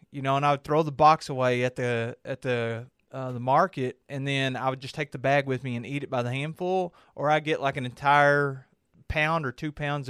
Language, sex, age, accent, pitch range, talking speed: English, male, 30-49, American, 130-155 Hz, 250 wpm